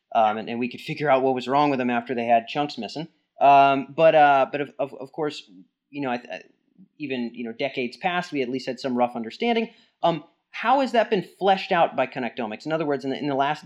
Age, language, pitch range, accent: 30-49, English, 125-160 Hz, American